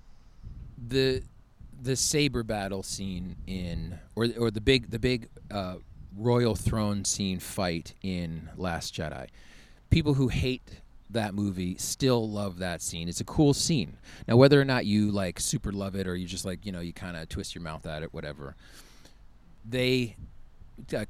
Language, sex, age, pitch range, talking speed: English, male, 30-49, 85-110 Hz, 170 wpm